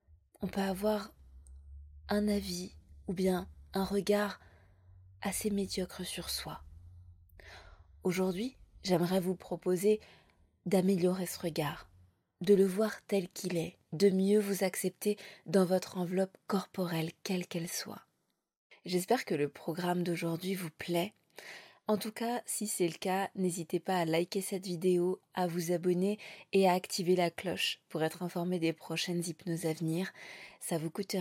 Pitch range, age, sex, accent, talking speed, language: 165-195 Hz, 20-39, female, French, 145 wpm, French